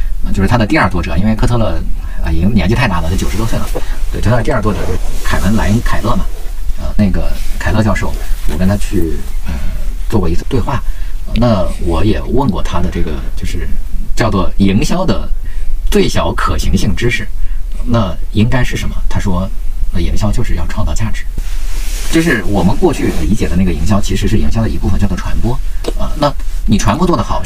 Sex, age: male, 50-69